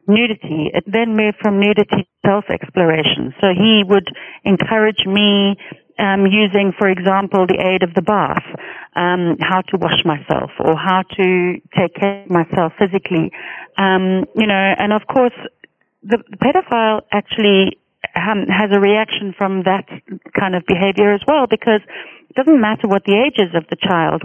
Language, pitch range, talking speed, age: English, 175-205 Hz, 165 wpm, 40-59